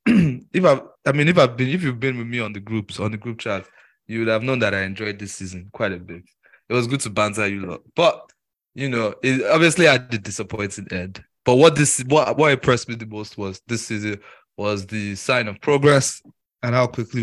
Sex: male